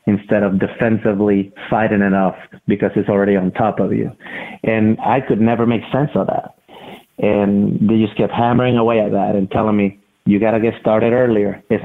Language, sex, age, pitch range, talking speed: English, male, 30-49, 100-115 Hz, 195 wpm